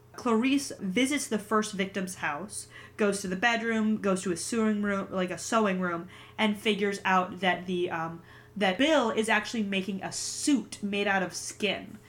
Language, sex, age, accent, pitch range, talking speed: English, female, 20-39, American, 190-235 Hz, 180 wpm